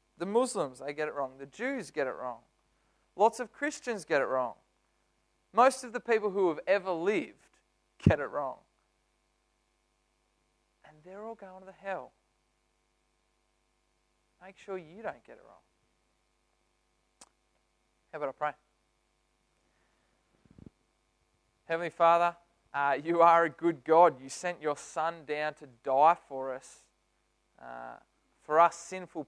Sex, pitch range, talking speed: male, 135-180 Hz, 135 wpm